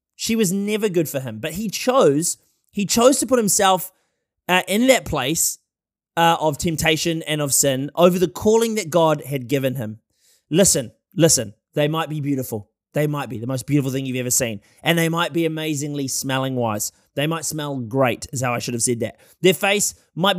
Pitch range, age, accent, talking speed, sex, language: 140-195 Hz, 20-39, Australian, 205 wpm, male, English